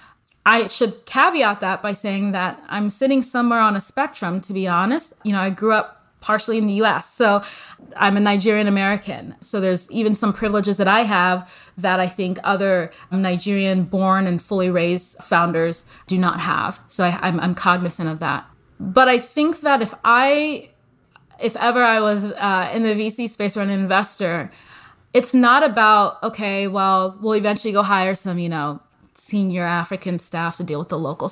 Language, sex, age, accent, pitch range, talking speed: English, female, 20-39, American, 180-220 Hz, 180 wpm